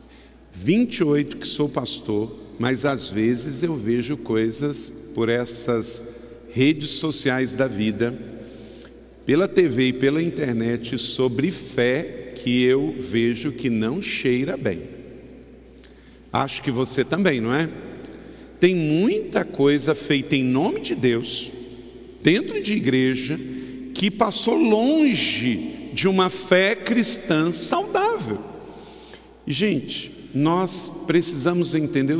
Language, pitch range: Portuguese, 130-195 Hz